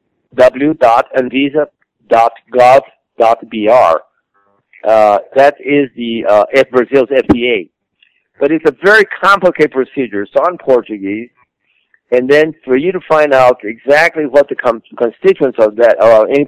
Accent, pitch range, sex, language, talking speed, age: American, 110-145 Hz, male, English, 125 wpm, 60-79